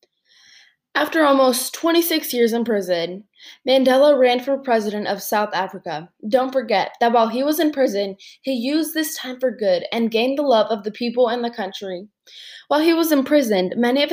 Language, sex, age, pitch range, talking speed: English, female, 10-29, 210-270 Hz, 185 wpm